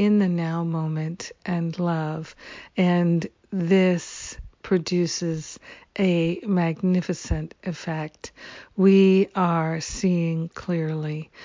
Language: English